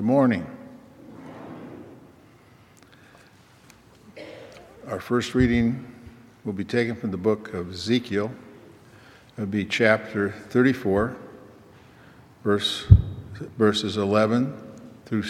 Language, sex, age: English, male, 60-79